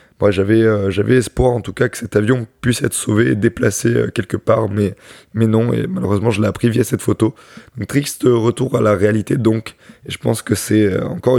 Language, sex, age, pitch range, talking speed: French, male, 20-39, 105-125 Hz, 205 wpm